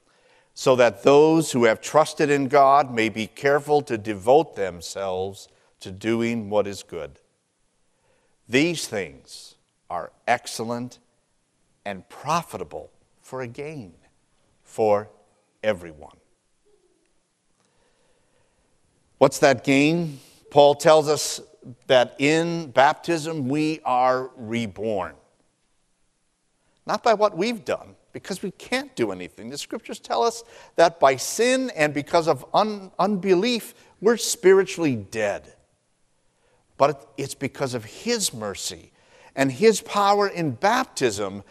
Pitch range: 115-175 Hz